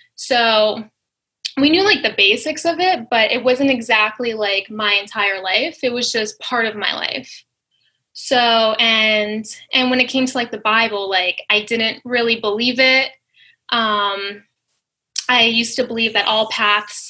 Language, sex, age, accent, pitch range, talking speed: English, female, 10-29, American, 215-255 Hz, 165 wpm